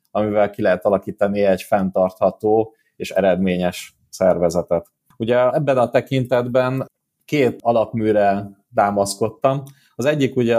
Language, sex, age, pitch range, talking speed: Hungarian, male, 20-39, 100-115 Hz, 110 wpm